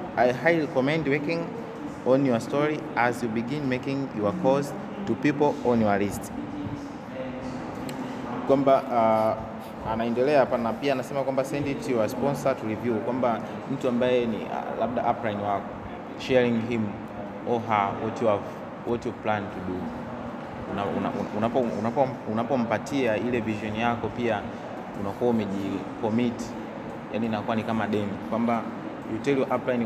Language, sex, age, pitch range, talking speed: Swahili, male, 30-49, 110-130 Hz, 145 wpm